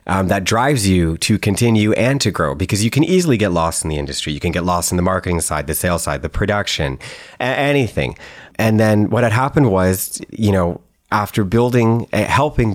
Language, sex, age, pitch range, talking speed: English, male, 30-49, 85-105 Hz, 205 wpm